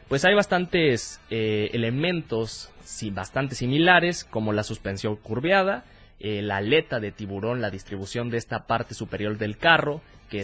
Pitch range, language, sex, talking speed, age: 105-140 Hz, Spanish, male, 150 wpm, 20-39